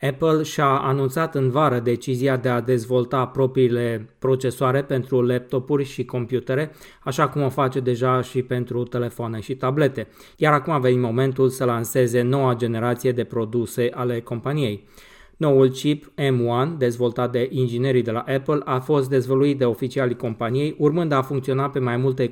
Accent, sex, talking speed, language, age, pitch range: native, male, 160 wpm, Romanian, 20-39, 120-135 Hz